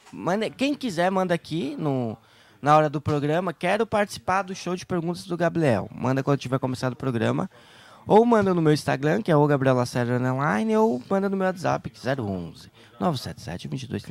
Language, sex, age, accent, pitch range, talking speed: Portuguese, male, 20-39, Brazilian, 120-155 Hz, 185 wpm